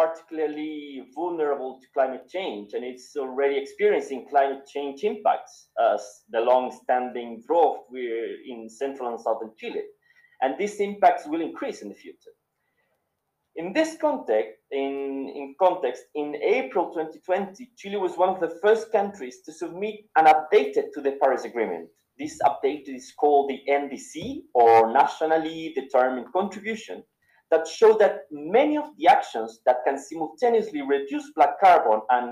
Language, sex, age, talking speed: English, male, 30-49, 145 wpm